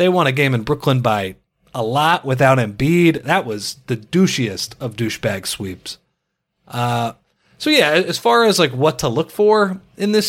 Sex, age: male, 30-49